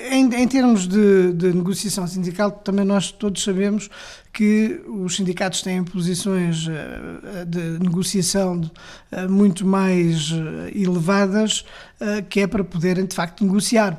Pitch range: 180-215 Hz